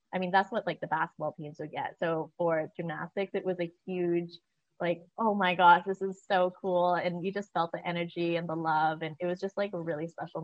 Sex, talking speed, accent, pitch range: female, 240 wpm, American, 165-185 Hz